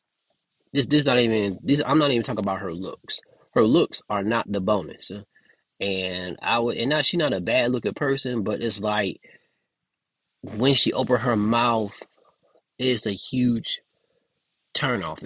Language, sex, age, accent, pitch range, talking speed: English, male, 20-39, American, 100-140 Hz, 160 wpm